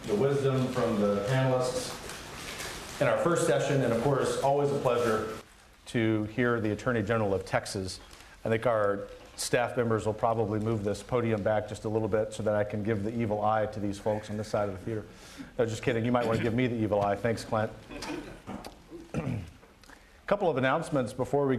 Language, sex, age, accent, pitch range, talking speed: English, male, 40-59, American, 110-130 Hz, 205 wpm